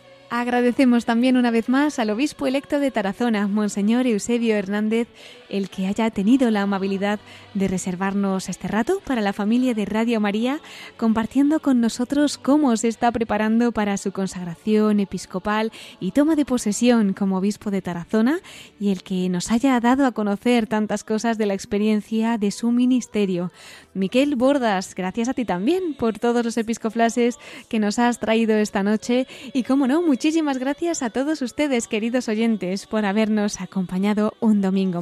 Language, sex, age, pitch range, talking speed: Spanish, female, 20-39, 200-255 Hz, 165 wpm